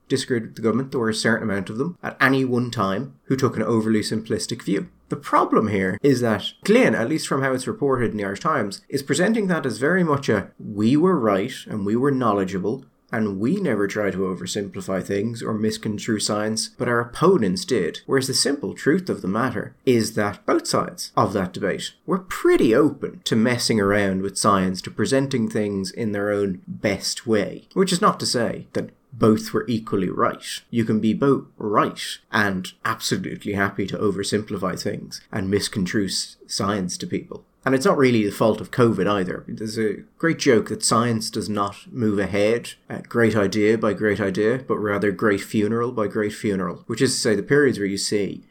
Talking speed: 200 wpm